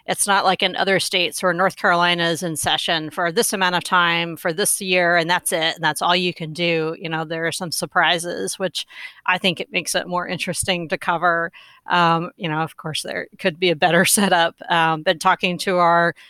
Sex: female